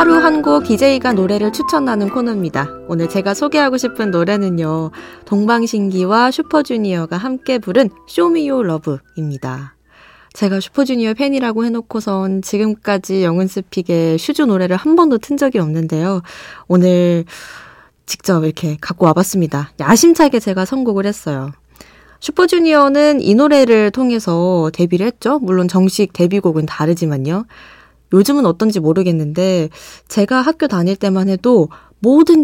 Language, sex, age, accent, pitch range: Korean, female, 20-39, native, 170-255 Hz